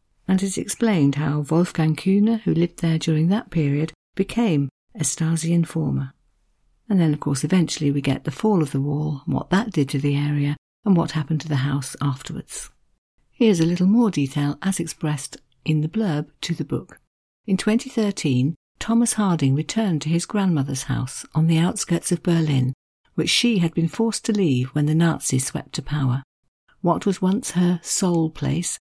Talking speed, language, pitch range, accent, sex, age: 180 wpm, English, 145-190 Hz, British, female, 50-69